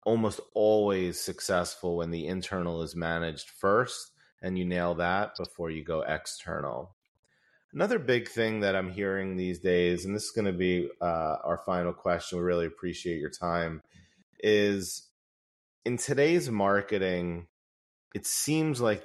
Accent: American